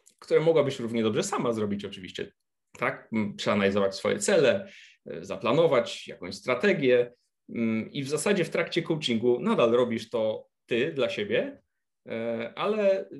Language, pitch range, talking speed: Polish, 125-175 Hz, 125 wpm